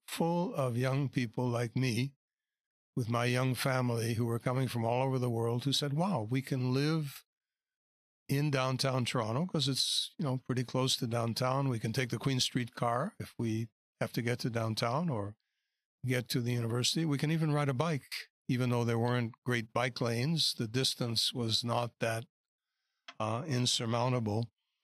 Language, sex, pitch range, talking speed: English, male, 115-140 Hz, 180 wpm